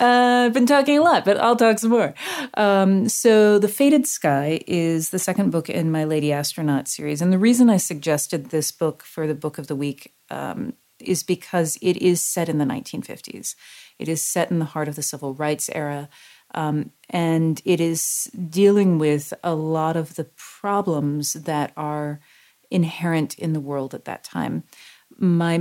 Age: 40-59